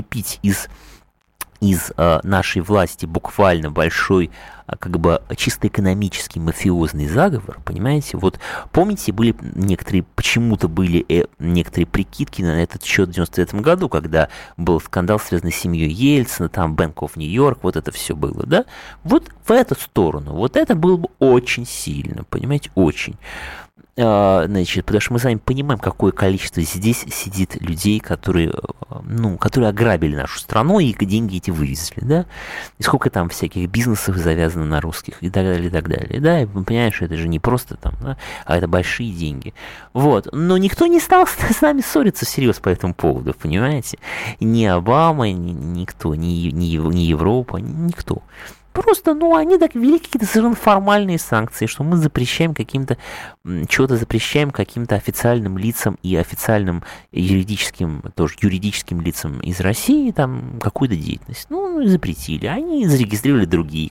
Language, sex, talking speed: Russian, male, 150 wpm